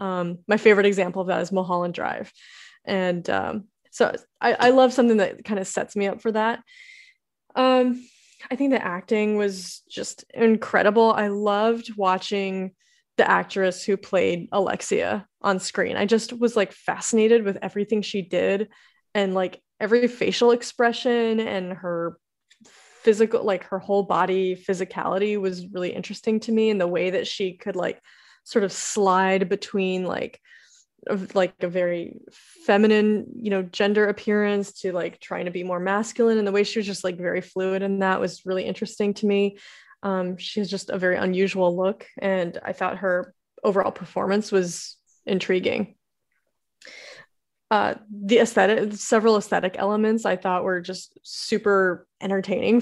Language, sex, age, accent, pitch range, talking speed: English, female, 20-39, American, 185-225 Hz, 160 wpm